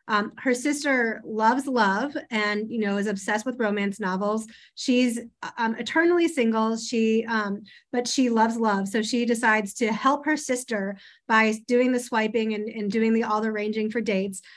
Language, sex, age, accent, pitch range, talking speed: English, female, 30-49, American, 215-240 Hz, 175 wpm